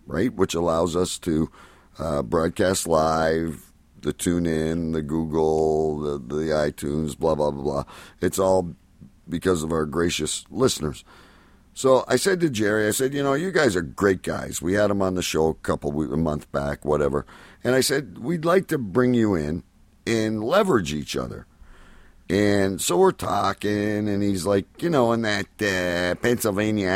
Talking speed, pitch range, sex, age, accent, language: 175 wpm, 80-110 Hz, male, 50-69, American, English